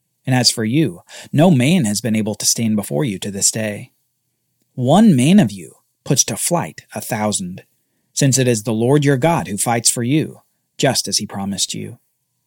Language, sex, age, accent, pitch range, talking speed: English, male, 40-59, American, 115-155 Hz, 195 wpm